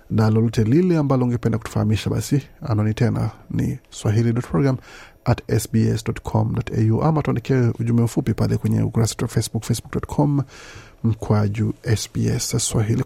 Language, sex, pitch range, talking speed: Swahili, male, 110-130 Hz, 90 wpm